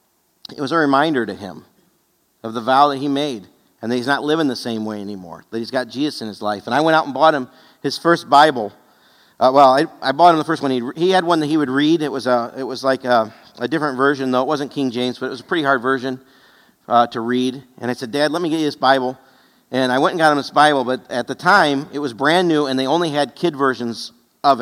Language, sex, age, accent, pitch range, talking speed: English, male, 50-69, American, 130-155 Hz, 280 wpm